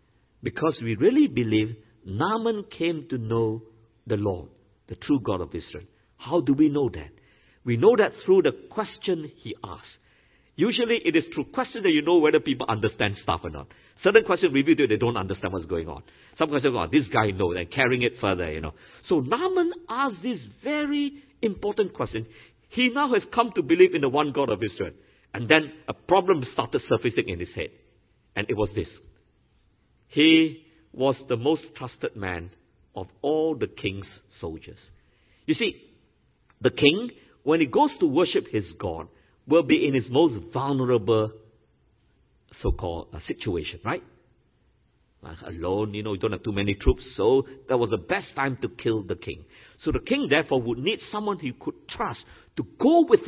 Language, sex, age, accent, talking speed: English, male, 50-69, Malaysian, 180 wpm